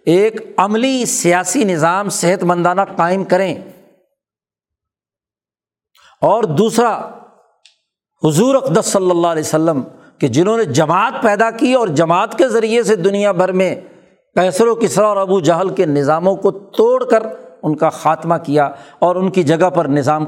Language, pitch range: Urdu, 155-200 Hz